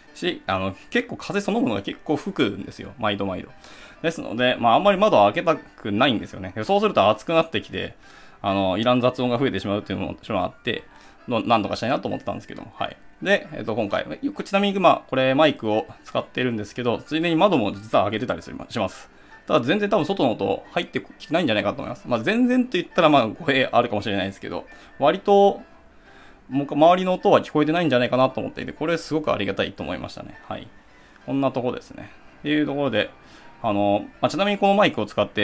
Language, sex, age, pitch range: Japanese, male, 20-39, 110-175 Hz